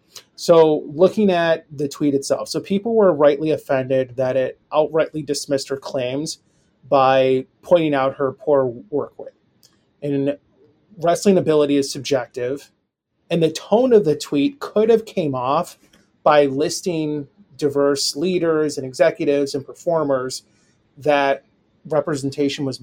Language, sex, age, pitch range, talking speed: English, male, 30-49, 135-165 Hz, 130 wpm